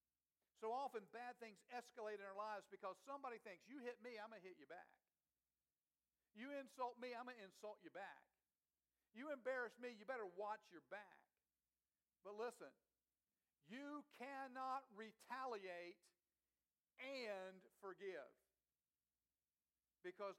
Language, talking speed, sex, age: English, 130 wpm, male, 50-69